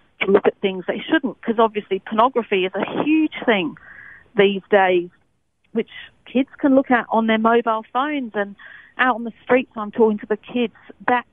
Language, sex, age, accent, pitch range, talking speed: English, female, 40-59, British, 185-230 Hz, 185 wpm